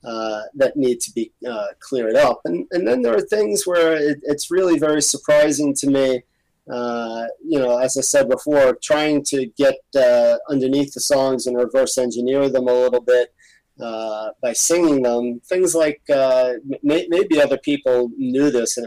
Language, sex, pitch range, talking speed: English, male, 120-150 Hz, 180 wpm